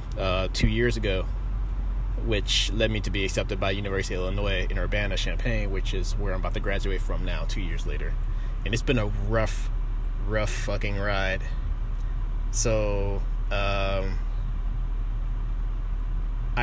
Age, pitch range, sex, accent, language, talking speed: 20-39, 100-115 Hz, male, American, English, 140 wpm